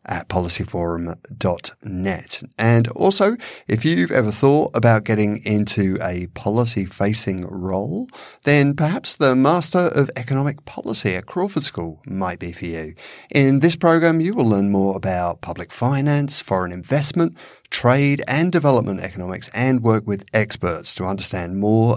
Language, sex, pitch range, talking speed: English, male, 95-130 Hz, 140 wpm